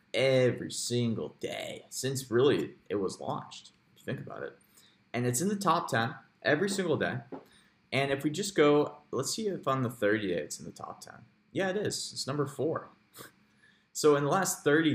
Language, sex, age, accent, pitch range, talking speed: English, male, 20-39, American, 100-125 Hz, 200 wpm